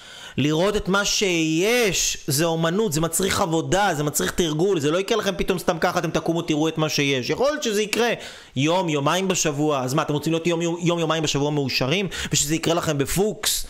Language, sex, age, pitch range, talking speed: Hebrew, male, 30-49, 160-210 Hz, 200 wpm